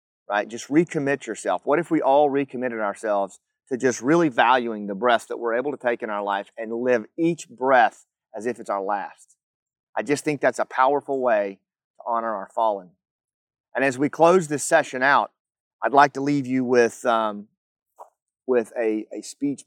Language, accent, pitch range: English, American, 110-140 Hz